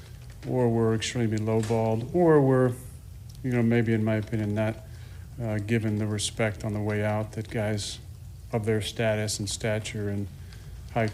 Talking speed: 160 wpm